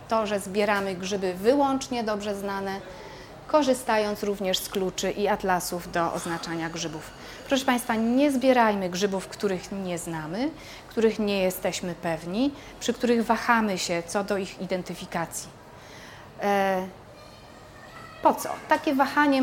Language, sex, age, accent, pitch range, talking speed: Polish, female, 40-59, native, 180-230 Hz, 125 wpm